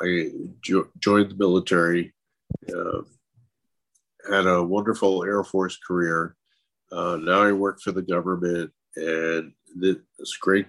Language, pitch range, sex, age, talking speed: English, 90-105 Hz, male, 50-69, 125 wpm